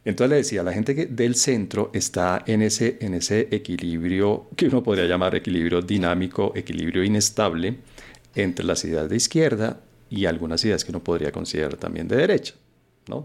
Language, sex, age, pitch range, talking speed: Spanish, male, 40-59, 90-110 Hz, 170 wpm